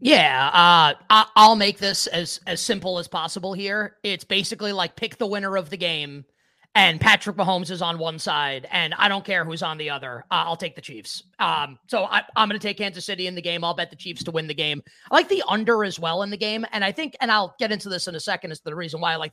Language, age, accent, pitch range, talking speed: English, 30-49, American, 165-210 Hz, 265 wpm